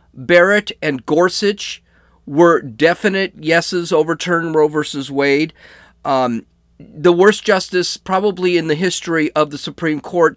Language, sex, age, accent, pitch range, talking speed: English, male, 40-59, American, 140-180 Hz, 125 wpm